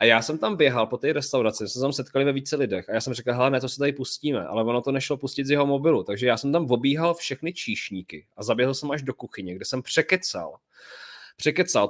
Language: Czech